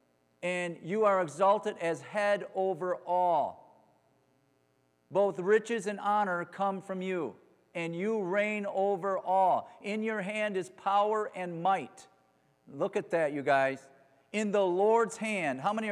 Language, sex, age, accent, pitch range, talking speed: English, male, 40-59, American, 160-200 Hz, 145 wpm